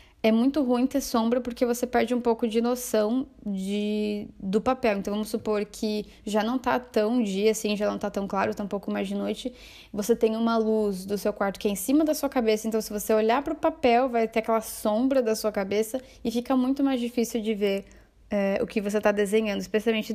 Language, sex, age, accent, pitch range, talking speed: Portuguese, female, 10-29, Brazilian, 205-240 Hz, 230 wpm